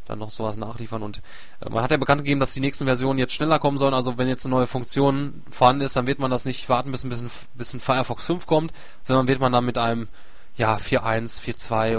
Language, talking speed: German, 245 wpm